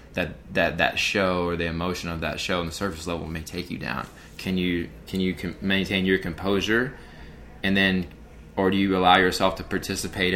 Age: 20-39